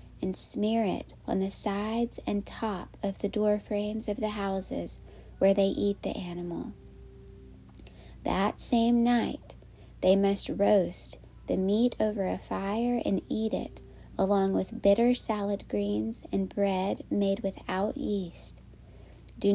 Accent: American